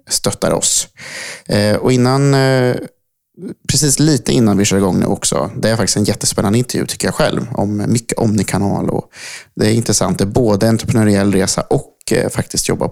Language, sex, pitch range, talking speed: Swedish, male, 100-115 Hz, 185 wpm